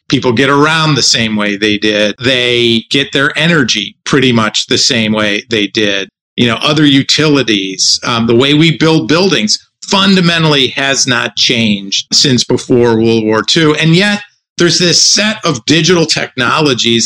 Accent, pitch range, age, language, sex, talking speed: American, 115-155 Hz, 50-69, English, male, 160 wpm